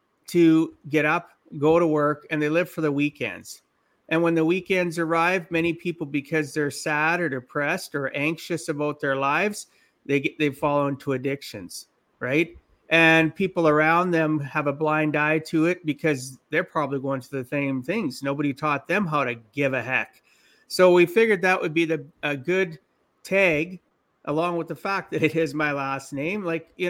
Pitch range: 145-170 Hz